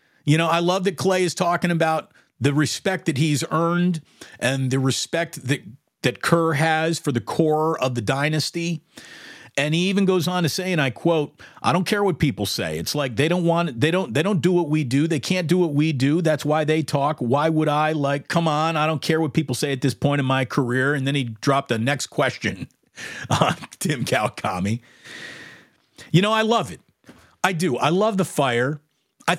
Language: English